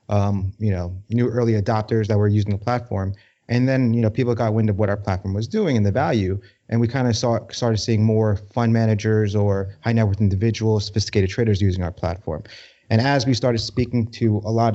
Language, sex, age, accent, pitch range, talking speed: English, male, 30-49, American, 100-115 Hz, 225 wpm